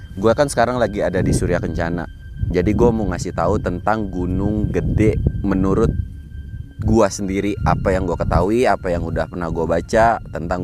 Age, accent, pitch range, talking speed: 30-49, native, 90-115 Hz, 170 wpm